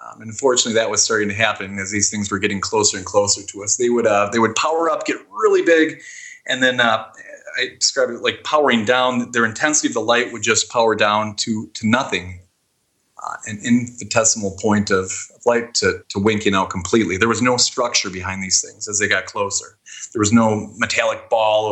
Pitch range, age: 100-120 Hz, 30-49